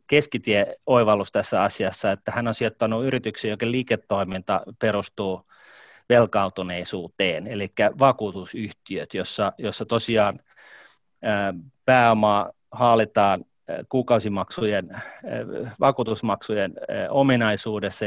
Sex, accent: male, native